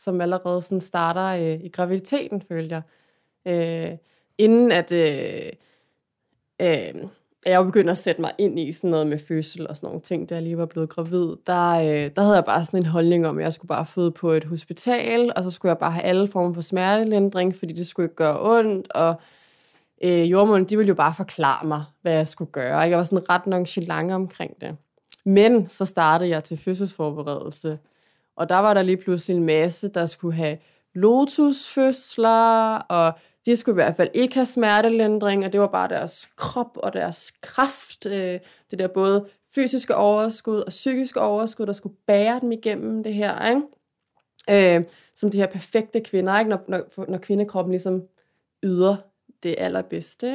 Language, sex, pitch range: Danish, female, 170-210 Hz